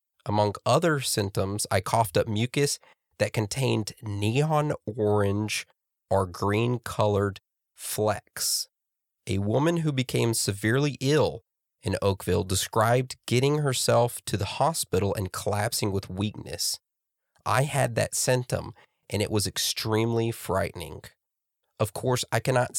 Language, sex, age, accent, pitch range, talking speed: English, male, 30-49, American, 100-120 Hz, 120 wpm